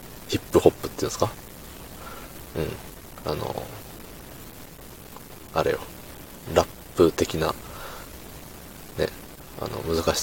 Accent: native